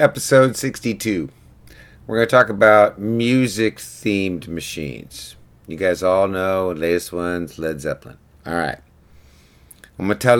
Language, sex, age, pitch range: English, male, 50-69, 85-110 Hz